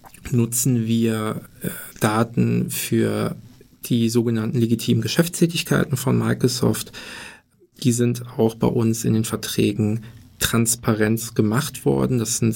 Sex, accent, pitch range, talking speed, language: male, German, 110-120 Hz, 115 wpm, German